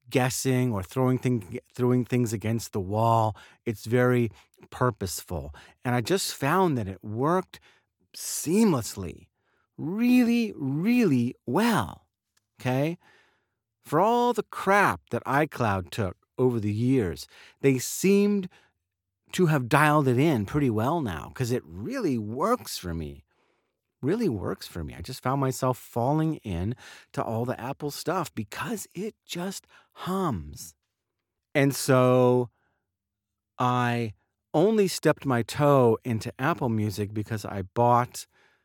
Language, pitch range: English, 105-150 Hz